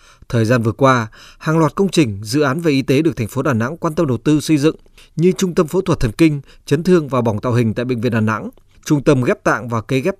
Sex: male